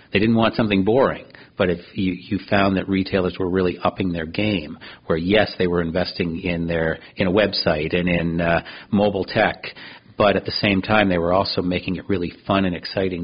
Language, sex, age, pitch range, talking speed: English, male, 40-59, 90-100 Hz, 210 wpm